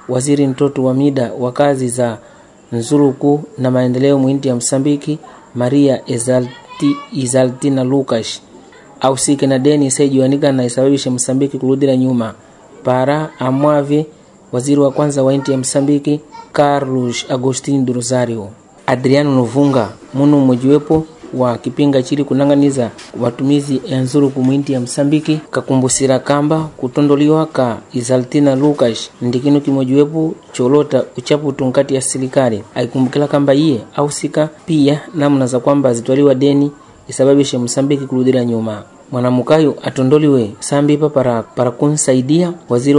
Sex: male